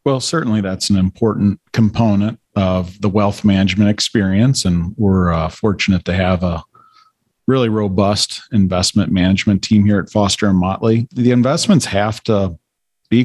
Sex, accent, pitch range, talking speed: male, American, 95-120 Hz, 150 wpm